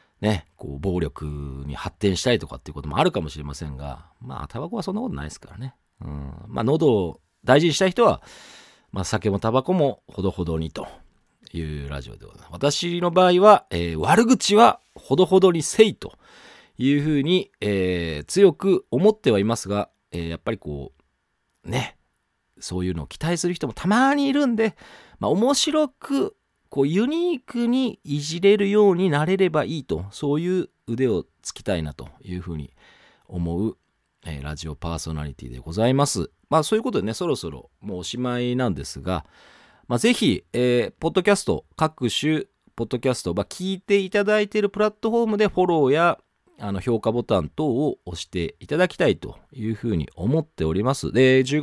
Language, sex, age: Japanese, male, 40-59